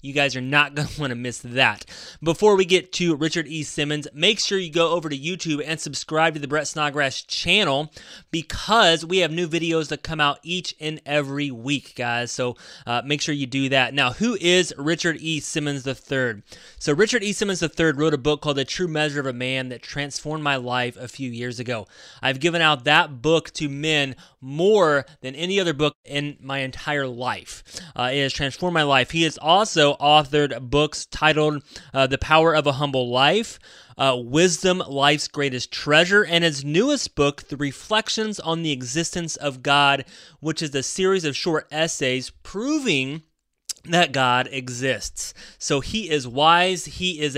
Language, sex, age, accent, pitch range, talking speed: English, male, 20-39, American, 135-165 Hz, 190 wpm